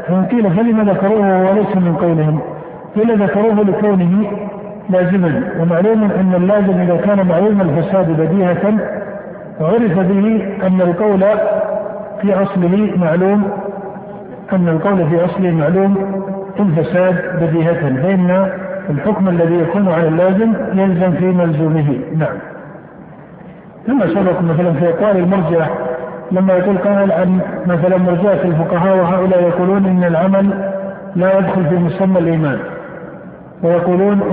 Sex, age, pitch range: male, 50-69, 170-195 Hz